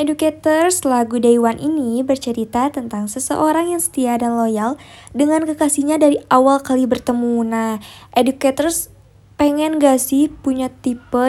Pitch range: 235-280 Hz